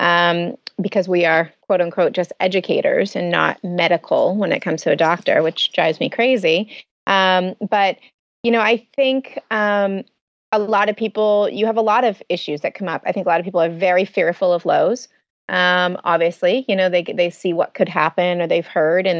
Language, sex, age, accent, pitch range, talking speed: English, female, 30-49, American, 180-220 Hz, 205 wpm